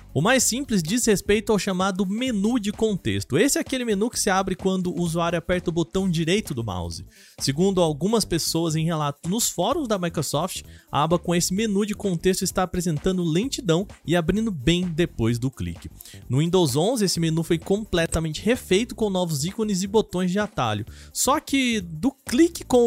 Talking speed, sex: 185 wpm, male